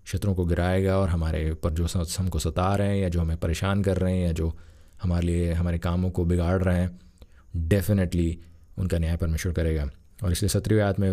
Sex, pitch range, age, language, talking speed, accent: male, 85-95 Hz, 20-39, Hindi, 200 wpm, native